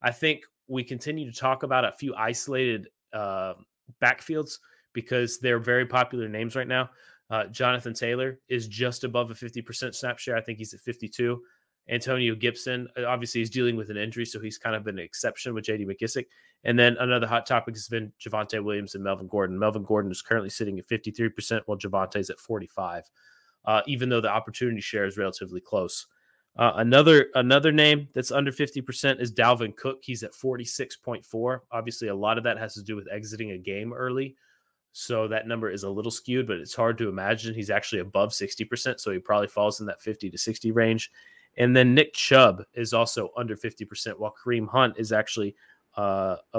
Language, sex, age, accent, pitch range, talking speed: English, male, 20-39, American, 105-125 Hz, 195 wpm